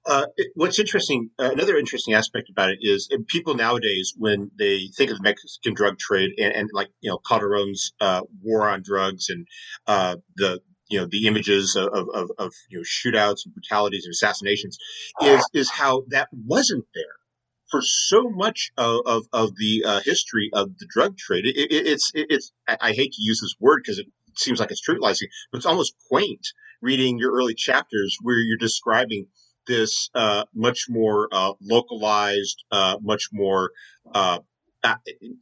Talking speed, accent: 180 wpm, American